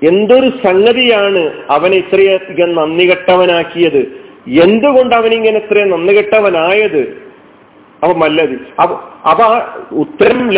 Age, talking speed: 40-59, 75 wpm